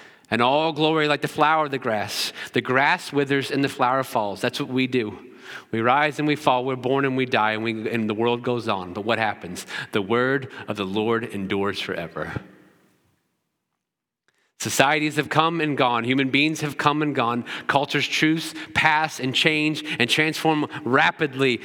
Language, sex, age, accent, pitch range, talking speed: English, male, 40-59, American, 120-150 Hz, 185 wpm